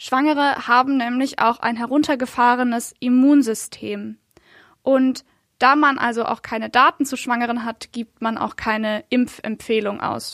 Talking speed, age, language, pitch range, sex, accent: 135 wpm, 10-29, German, 230-260 Hz, female, German